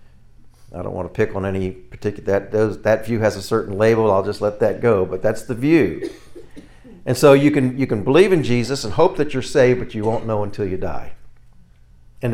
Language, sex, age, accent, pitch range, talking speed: English, male, 50-69, American, 95-125 Hz, 230 wpm